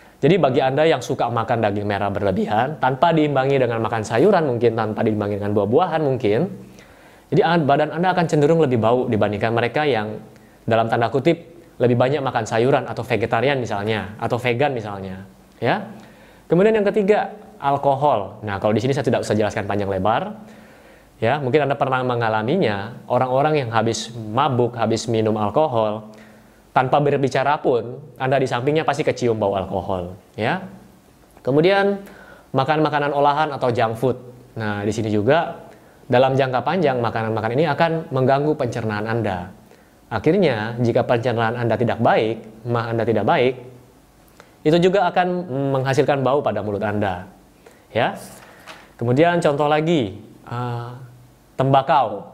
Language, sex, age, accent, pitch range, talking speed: Indonesian, male, 20-39, native, 110-145 Hz, 145 wpm